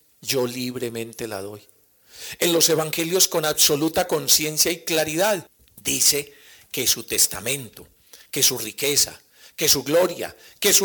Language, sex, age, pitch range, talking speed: Spanish, male, 50-69, 155-215 Hz, 135 wpm